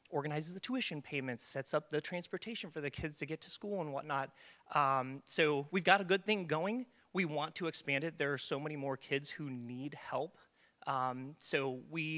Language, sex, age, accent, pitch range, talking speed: English, male, 30-49, American, 135-165 Hz, 205 wpm